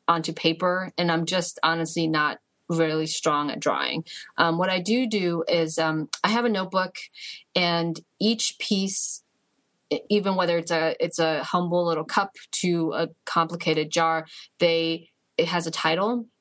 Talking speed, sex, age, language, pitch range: 155 wpm, female, 30-49, English, 160-180 Hz